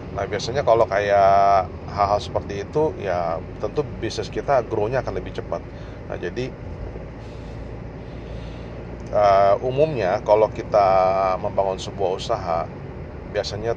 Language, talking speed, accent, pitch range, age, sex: Indonesian, 110 wpm, native, 95-120 Hz, 30-49, male